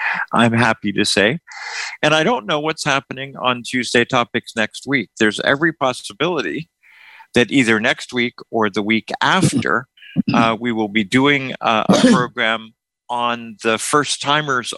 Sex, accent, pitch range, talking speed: male, American, 110-130 Hz, 155 wpm